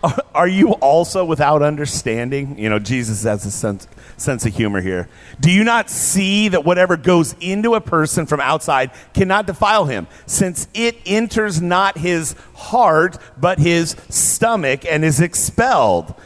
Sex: male